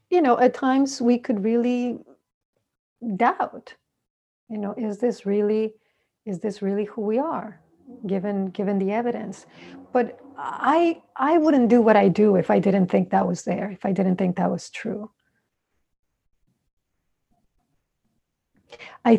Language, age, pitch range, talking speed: English, 50-69, 205-245 Hz, 145 wpm